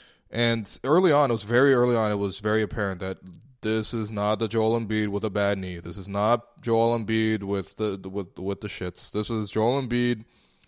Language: English